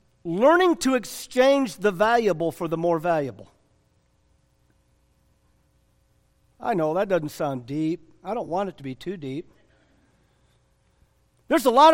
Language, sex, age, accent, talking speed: English, male, 50-69, American, 130 wpm